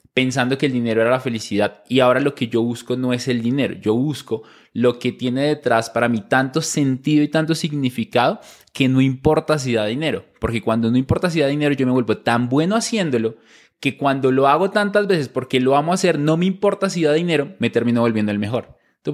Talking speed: 225 wpm